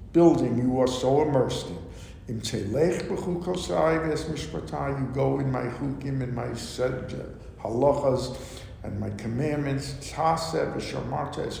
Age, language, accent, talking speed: 60-79, English, American, 130 wpm